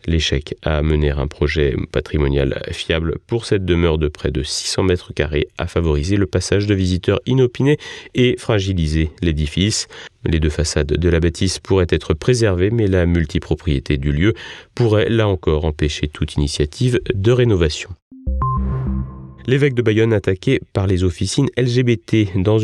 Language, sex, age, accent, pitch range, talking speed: French, male, 30-49, French, 80-105 Hz, 150 wpm